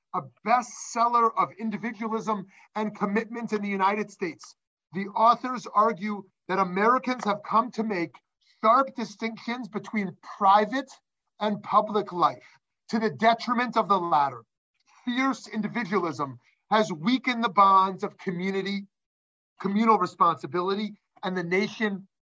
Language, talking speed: English, 120 wpm